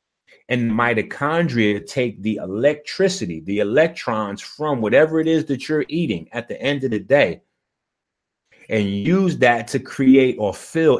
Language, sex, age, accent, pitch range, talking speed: English, male, 30-49, American, 110-140 Hz, 145 wpm